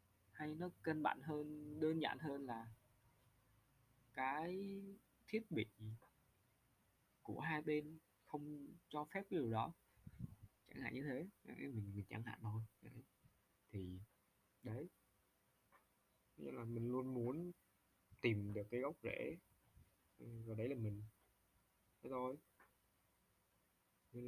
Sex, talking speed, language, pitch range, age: male, 120 wpm, Vietnamese, 105-130 Hz, 20-39